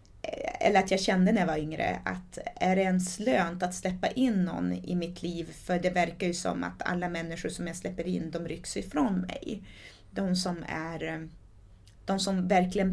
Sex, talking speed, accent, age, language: female, 200 wpm, native, 30-49, Swedish